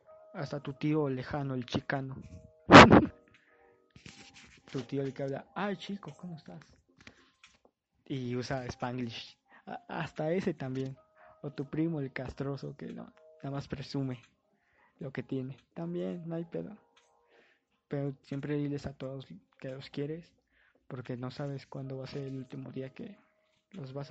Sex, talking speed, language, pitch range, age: male, 145 wpm, Spanish, 130-155 Hz, 20-39